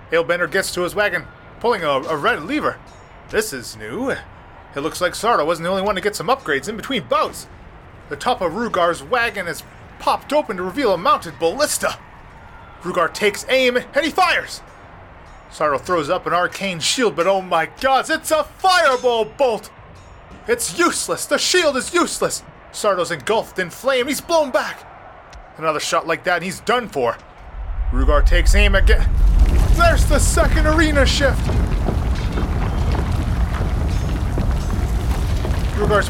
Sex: male